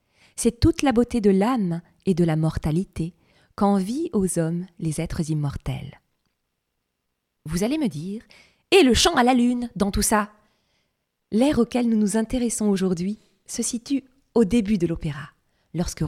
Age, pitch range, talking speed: 20-39, 165-240 Hz, 155 wpm